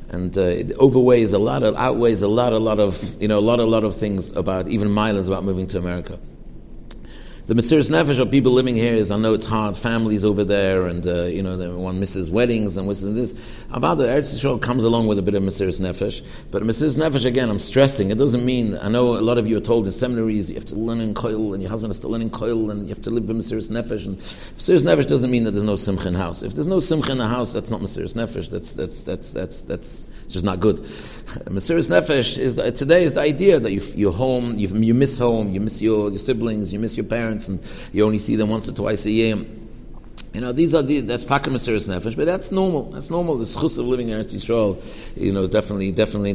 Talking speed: 250 wpm